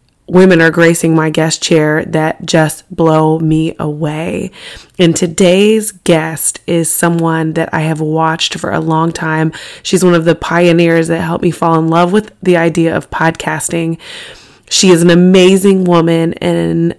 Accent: American